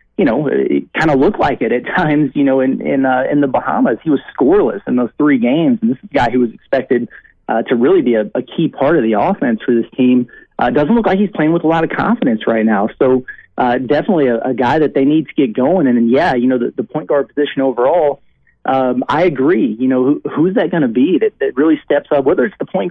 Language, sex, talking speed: English, male, 265 wpm